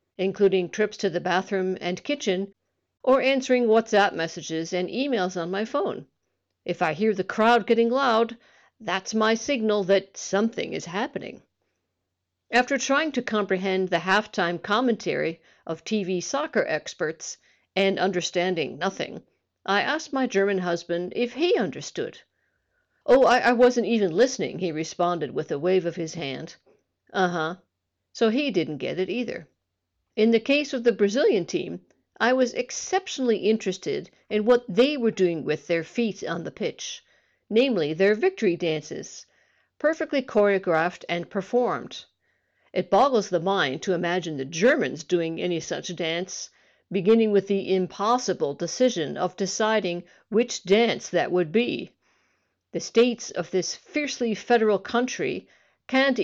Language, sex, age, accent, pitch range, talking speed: English, female, 50-69, American, 180-240 Hz, 145 wpm